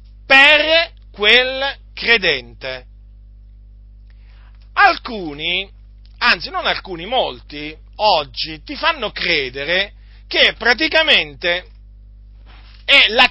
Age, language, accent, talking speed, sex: 40-59, Italian, native, 70 wpm, male